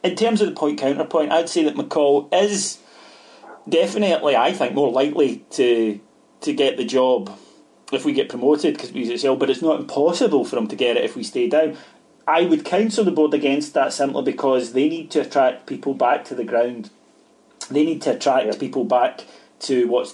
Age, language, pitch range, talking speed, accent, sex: 30-49, English, 115-155 Hz, 205 wpm, British, male